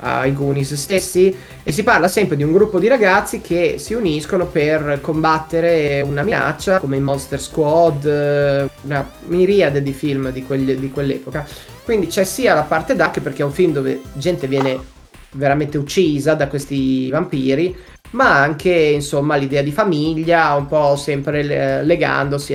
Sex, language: male, Italian